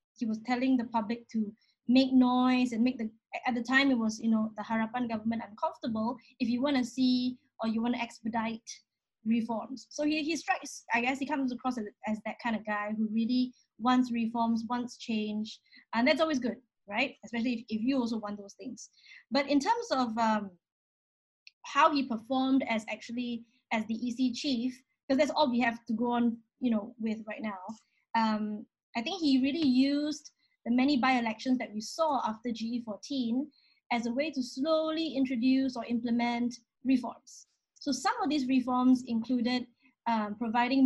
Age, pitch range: 20-39, 225-260 Hz